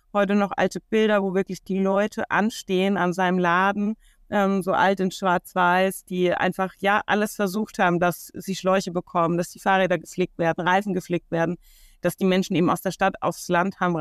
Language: German